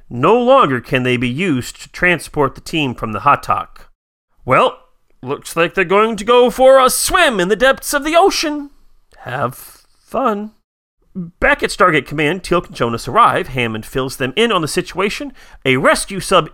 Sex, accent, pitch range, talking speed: male, American, 130-215 Hz, 175 wpm